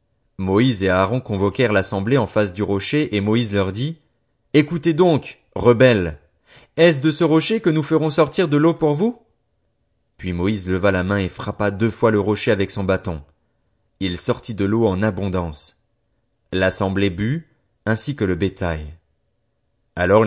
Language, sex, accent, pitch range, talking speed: French, male, French, 100-140 Hz, 165 wpm